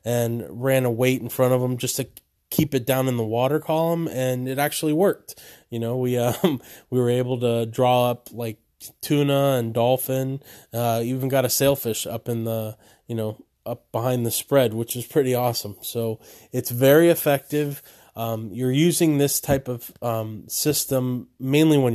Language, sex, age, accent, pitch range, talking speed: English, male, 20-39, American, 115-135 Hz, 185 wpm